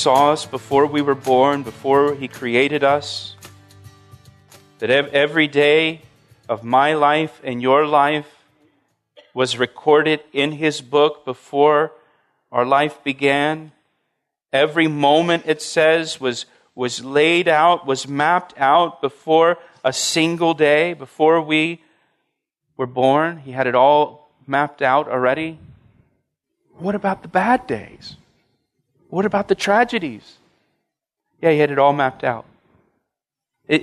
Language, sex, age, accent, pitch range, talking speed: English, male, 40-59, American, 130-160 Hz, 125 wpm